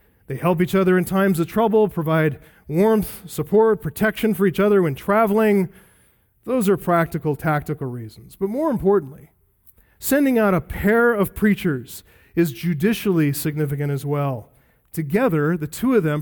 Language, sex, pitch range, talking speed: English, male, 150-200 Hz, 150 wpm